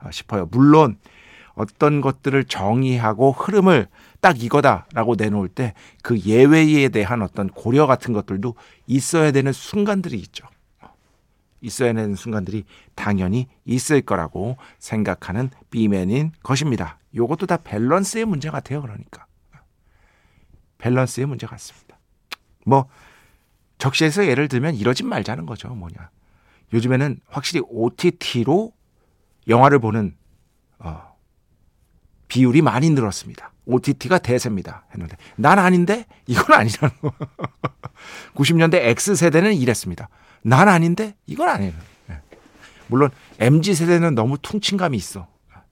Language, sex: Korean, male